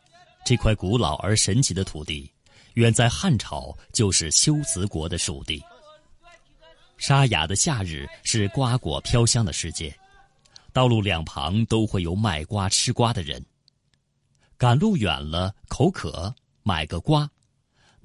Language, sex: Chinese, male